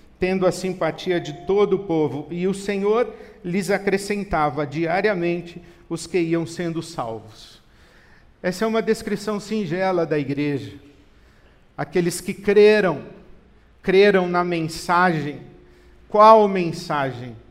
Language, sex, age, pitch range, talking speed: Portuguese, male, 50-69, 160-195 Hz, 115 wpm